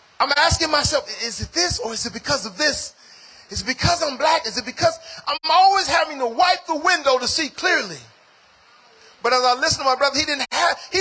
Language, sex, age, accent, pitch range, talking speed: English, male, 40-59, American, 180-290 Hz, 220 wpm